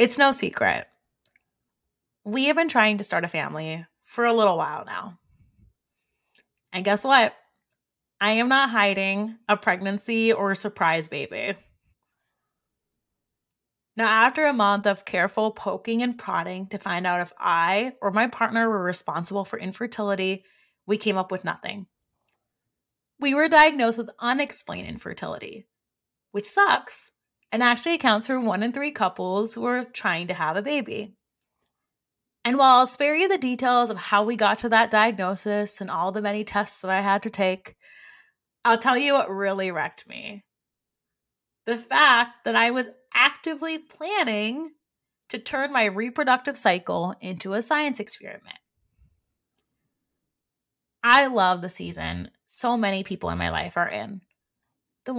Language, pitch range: English, 190-250 Hz